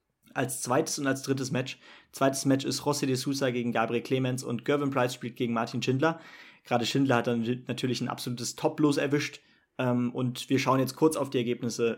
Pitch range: 125-145 Hz